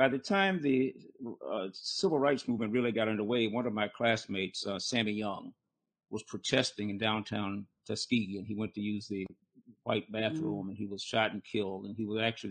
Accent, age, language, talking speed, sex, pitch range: American, 50-69, English, 195 wpm, male, 100-115 Hz